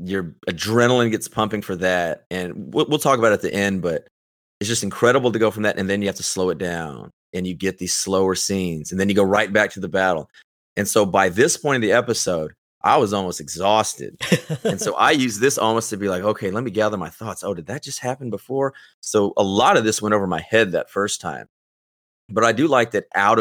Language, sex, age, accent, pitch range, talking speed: English, male, 30-49, American, 90-110 Hz, 250 wpm